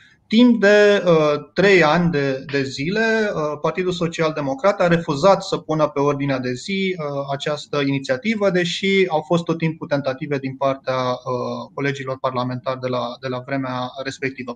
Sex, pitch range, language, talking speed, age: male, 135-190 Hz, Romanian, 140 wpm, 30-49